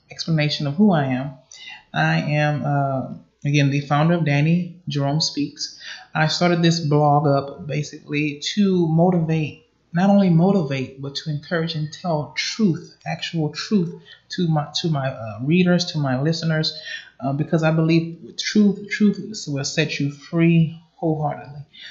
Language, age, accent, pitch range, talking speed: English, 30-49, American, 150-180 Hz, 150 wpm